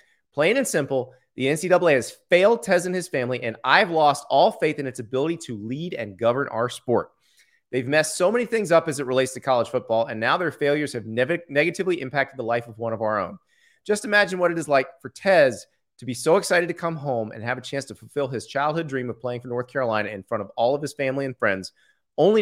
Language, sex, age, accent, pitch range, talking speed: English, male, 30-49, American, 115-155 Hz, 240 wpm